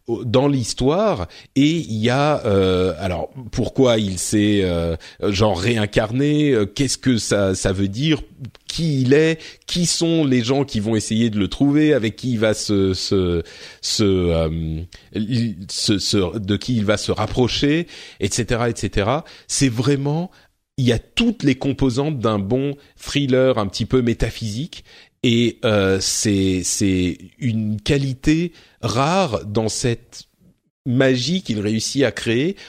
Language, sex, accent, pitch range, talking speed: French, male, French, 100-140 Hz, 150 wpm